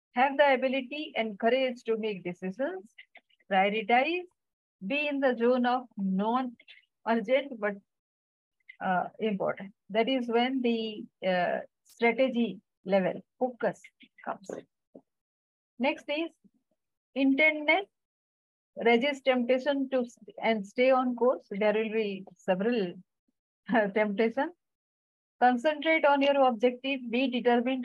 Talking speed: 100 wpm